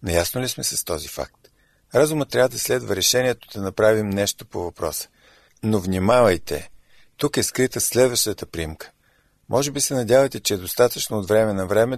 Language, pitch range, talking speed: Bulgarian, 95-125 Hz, 170 wpm